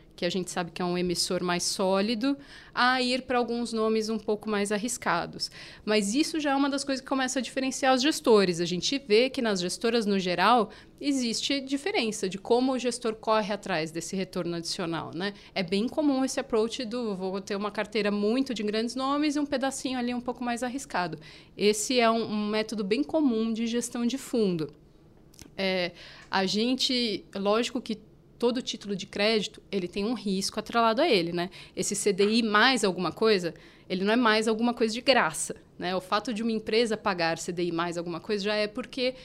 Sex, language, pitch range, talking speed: female, Portuguese, 195-245 Hz, 195 wpm